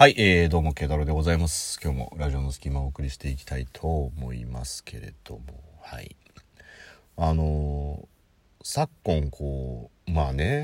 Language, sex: Japanese, male